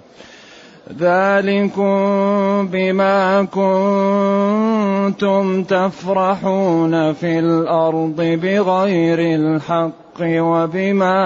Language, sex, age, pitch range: Arabic, male, 30-49, 160-190 Hz